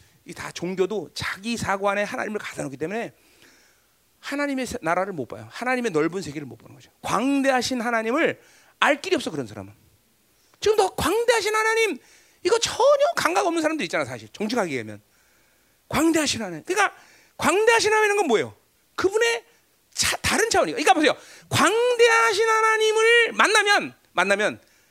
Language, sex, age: Korean, male, 40-59